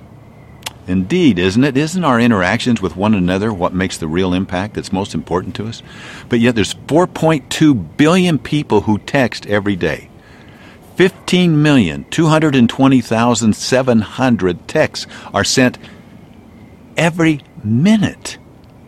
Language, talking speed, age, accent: English, 145 wpm, 50-69, American